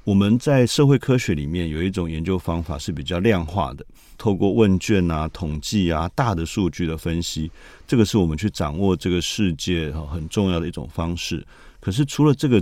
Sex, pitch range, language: male, 80-100 Hz, Chinese